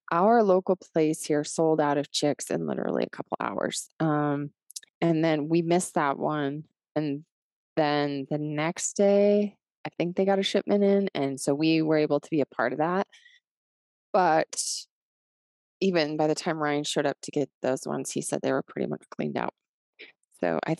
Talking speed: 190 wpm